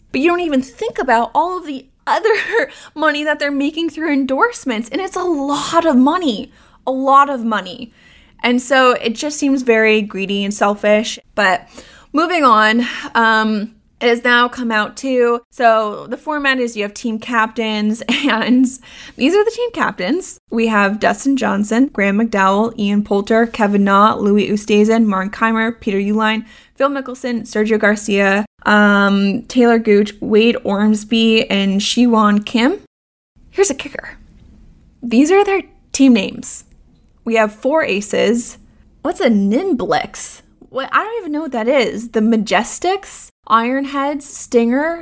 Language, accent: English, American